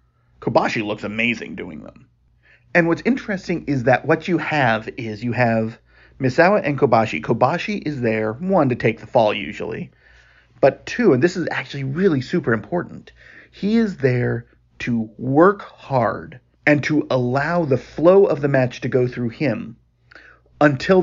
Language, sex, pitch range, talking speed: English, male, 115-160 Hz, 160 wpm